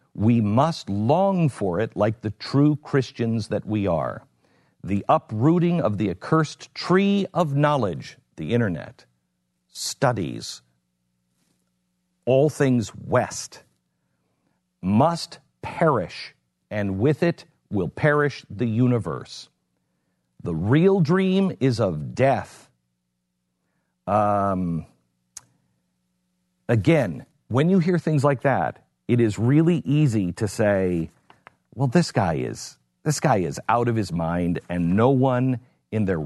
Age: 50-69